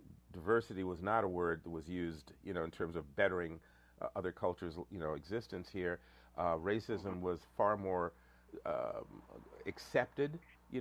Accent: American